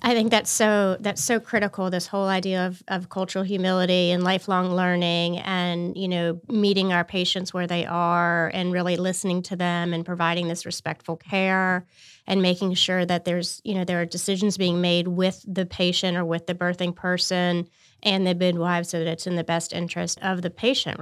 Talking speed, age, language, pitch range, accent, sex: 195 wpm, 30-49, English, 175-195 Hz, American, female